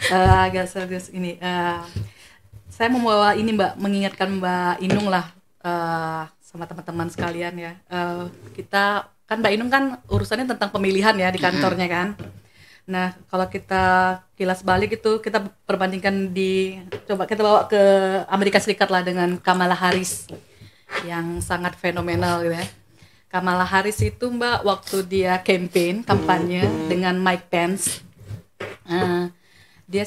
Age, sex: 20-39, female